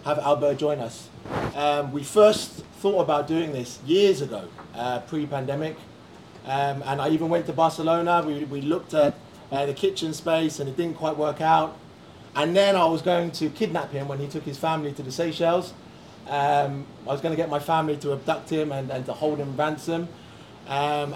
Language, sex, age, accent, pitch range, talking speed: English, male, 20-39, British, 140-175 Hz, 200 wpm